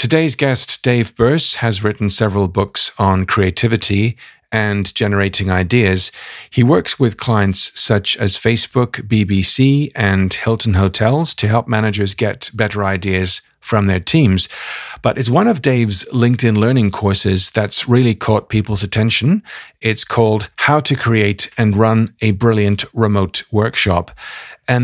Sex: male